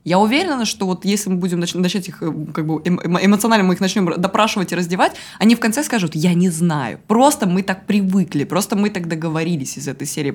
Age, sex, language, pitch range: 20-39, female, Russian, 155-205 Hz